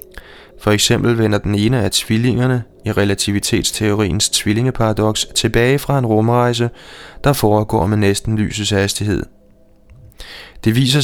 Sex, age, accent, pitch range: male, 20-39, native, 100-120 Hz